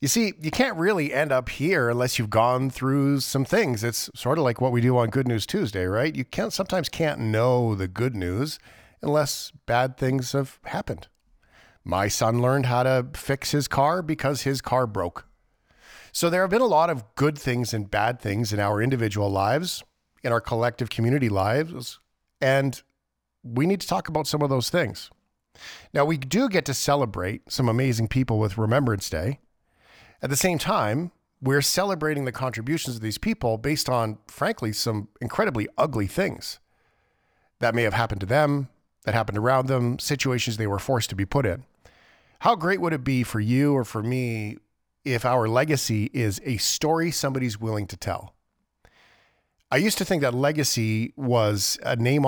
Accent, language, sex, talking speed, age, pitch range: American, English, male, 180 wpm, 50-69, 110-145 Hz